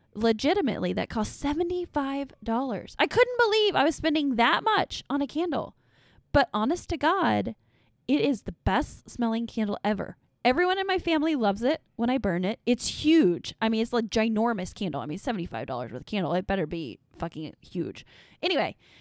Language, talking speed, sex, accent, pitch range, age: English, 175 wpm, female, American, 200-315 Hz, 20-39